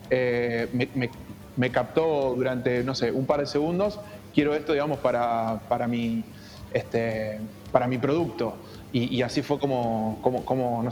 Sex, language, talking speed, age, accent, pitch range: male, Spanish, 165 wpm, 20-39, Argentinian, 120-145 Hz